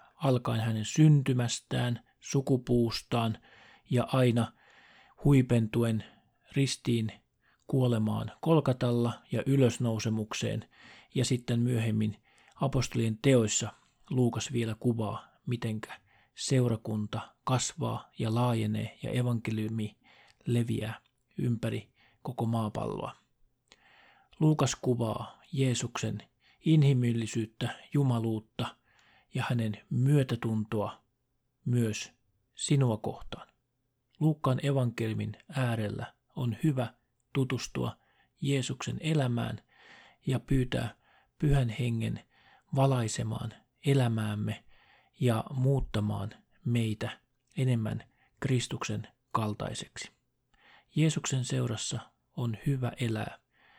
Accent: native